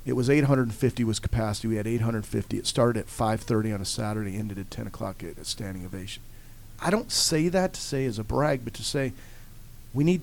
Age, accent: 40-59, American